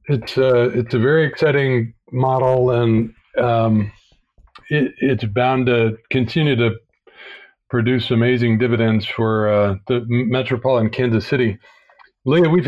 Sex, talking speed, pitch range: male, 115 wpm, 115-140 Hz